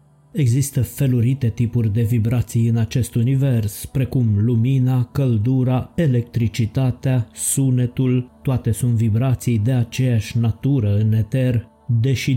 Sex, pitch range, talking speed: male, 110-130 Hz, 105 wpm